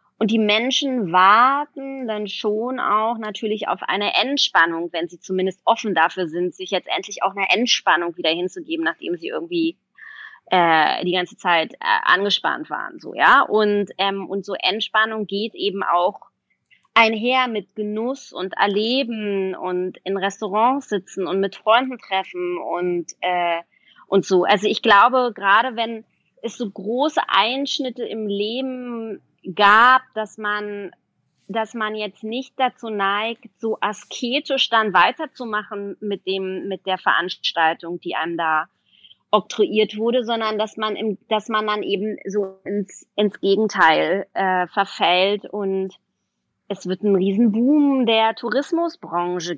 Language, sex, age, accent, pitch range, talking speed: German, female, 20-39, German, 190-240 Hz, 140 wpm